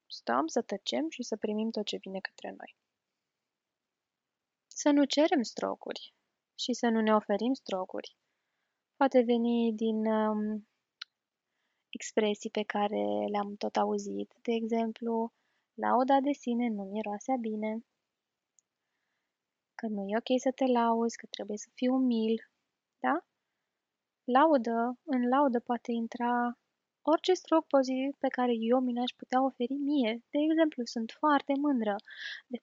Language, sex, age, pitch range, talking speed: Romanian, female, 20-39, 220-270 Hz, 135 wpm